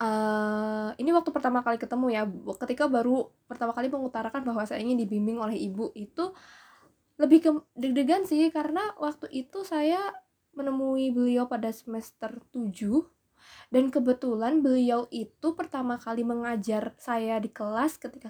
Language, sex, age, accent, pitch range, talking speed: Indonesian, female, 20-39, native, 225-295 Hz, 140 wpm